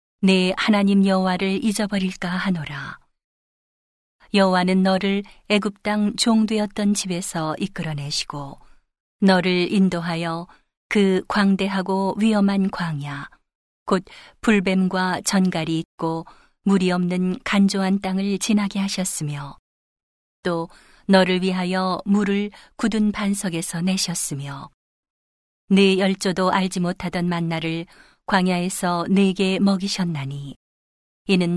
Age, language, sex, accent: 40-59, Korean, female, native